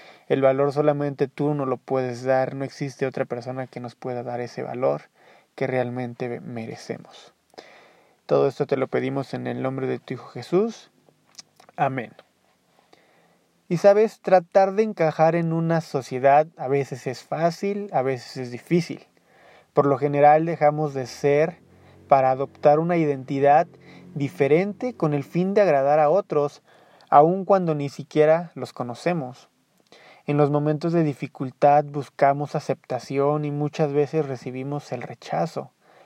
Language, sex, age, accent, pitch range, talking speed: Spanish, male, 30-49, Mexican, 135-155 Hz, 145 wpm